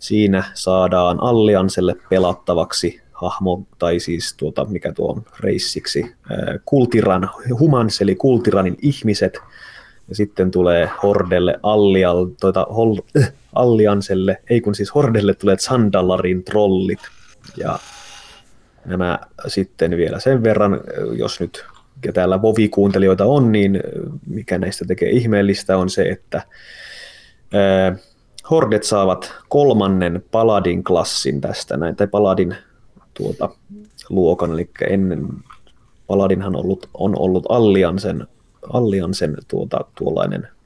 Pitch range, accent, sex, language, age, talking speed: 90-105 Hz, native, male, Finnish, 20-39, 110 wpm